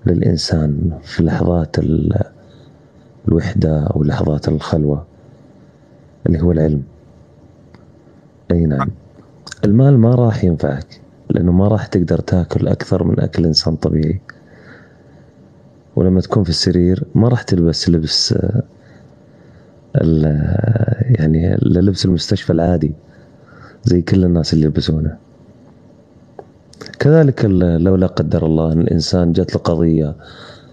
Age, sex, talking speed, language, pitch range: 30-49, male, 105 wpm, Arabic, 85-115 Hz